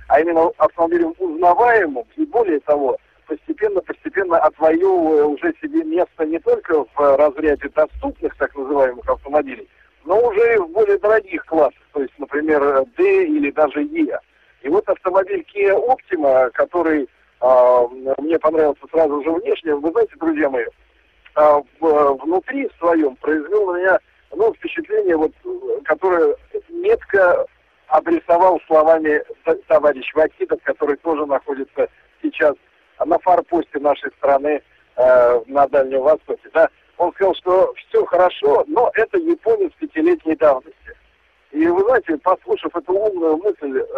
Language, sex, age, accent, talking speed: Russian, male, 50-69, native, 130 wpm